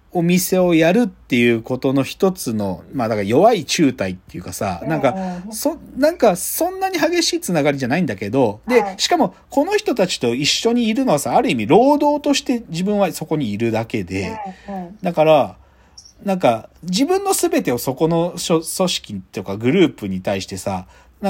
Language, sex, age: Japanese, male, 40-59